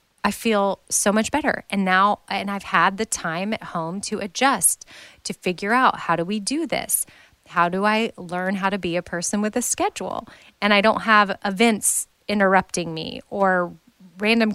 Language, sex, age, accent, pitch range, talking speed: English, female, 20-39, American, 175-220 Hz, 185 wpm